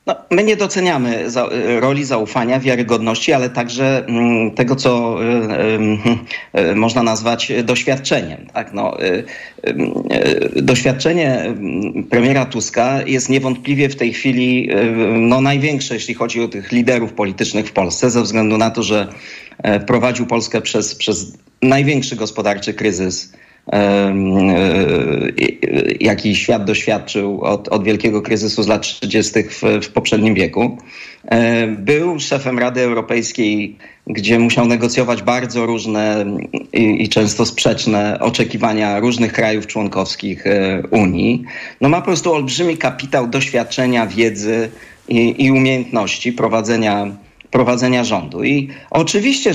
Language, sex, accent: Polish, male, native